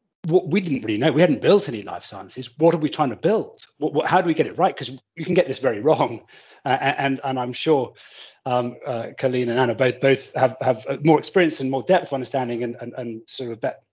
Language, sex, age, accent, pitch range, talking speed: English, male, 30-49, British, 125-150 Hz, 255 wpm